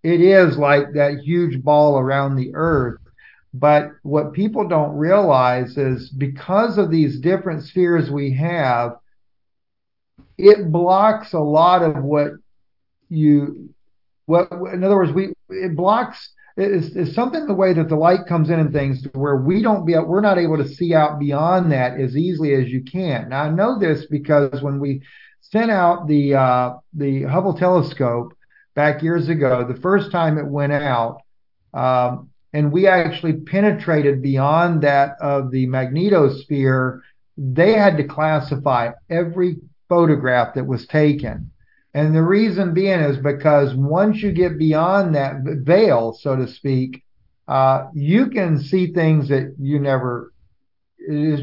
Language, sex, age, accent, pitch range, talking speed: English, male, 50-69, American, 135-175 Hz, 155 wpm